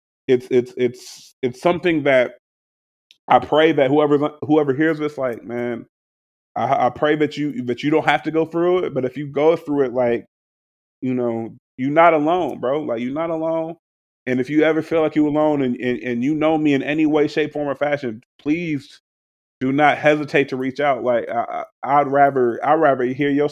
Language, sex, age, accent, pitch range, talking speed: English, male, 30-49, American, 125-150 Hz, 210 wpm